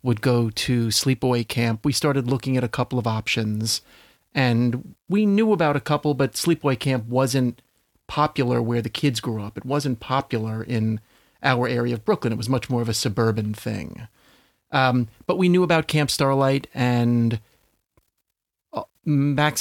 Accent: American